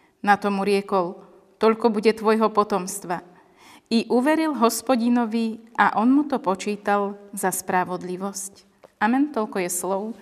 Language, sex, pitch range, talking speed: Slovak, female, 200-240 Hz, 125 wpm